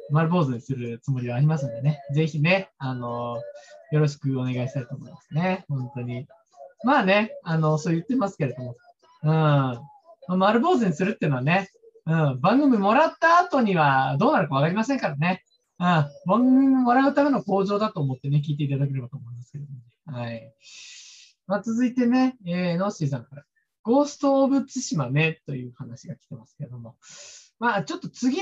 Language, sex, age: Japanese, male, 20-39